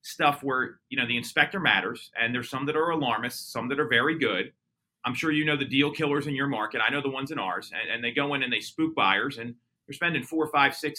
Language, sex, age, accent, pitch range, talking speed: English, male, 30-49, American, 125-150 Hz, 270 wpm